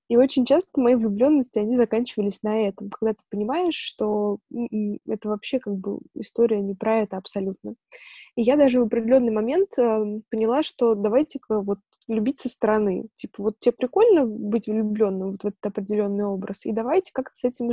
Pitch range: 215-265 Hz